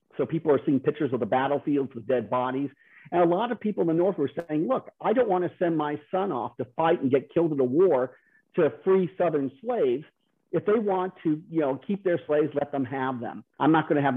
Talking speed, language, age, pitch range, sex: 255 wpm, English, 50-69, 130-170 Hz, male